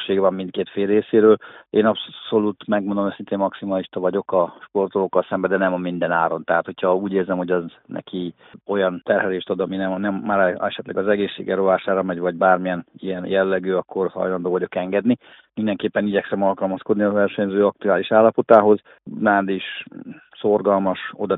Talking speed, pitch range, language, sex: 160 wpm, 95-105 Hz, Hungarian, male